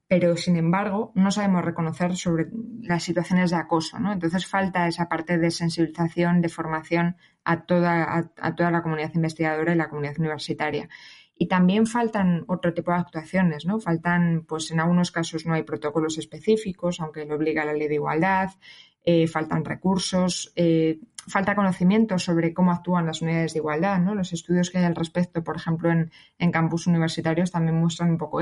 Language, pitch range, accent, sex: Spanish, 160-180 Hz, Spanish, female